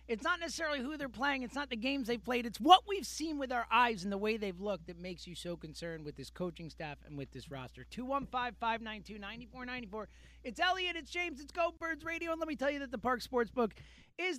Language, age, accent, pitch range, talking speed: English, 30-49, American, 205-260 Hz, 235 wpm